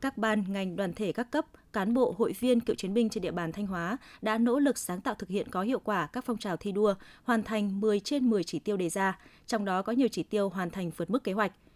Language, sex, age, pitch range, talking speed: Vietnamese, female, 20-39, 190-240 Hz, 280 wpm